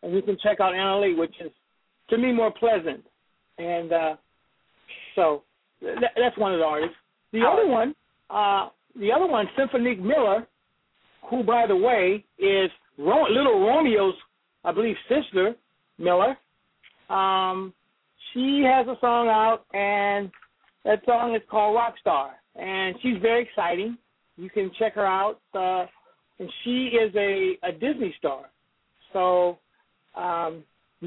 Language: English